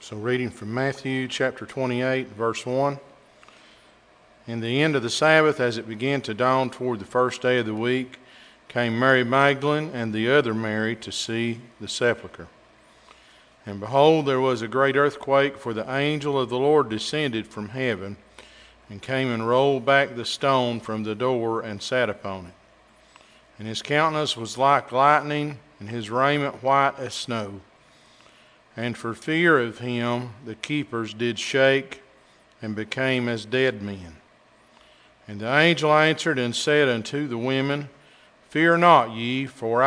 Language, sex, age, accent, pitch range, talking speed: English, male, 50-69, American, 115-140 Hz, 160 wpm